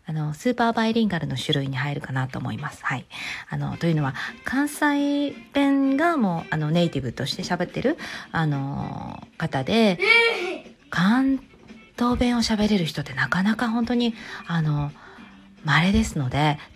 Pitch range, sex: 155-225 Hz, female